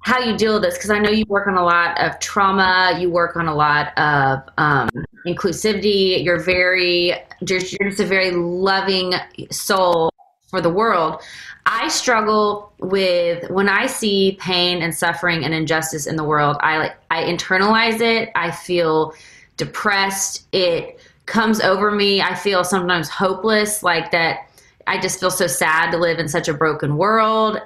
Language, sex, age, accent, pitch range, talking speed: English, female, 20-39, American, 170-210 Hz, 170 wpm